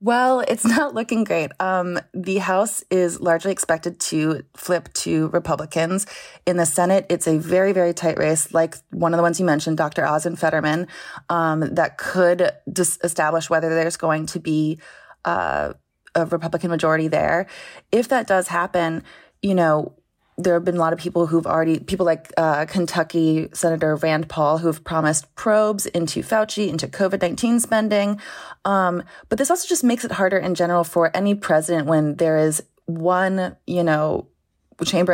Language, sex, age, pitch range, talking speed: English, female, 20-39, 160-190 Hz, 175 wpm